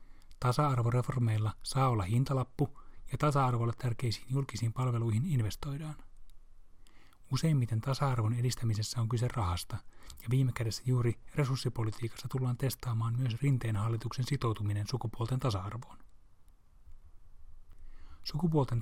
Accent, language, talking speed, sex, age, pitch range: native, Finnish, 95 wpm, male, 30-49, 105-130 Hz